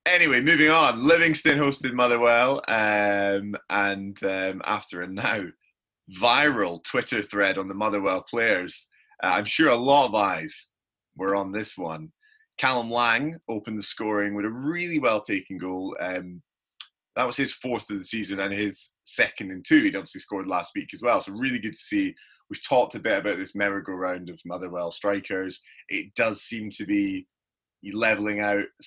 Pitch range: 95-120 Hz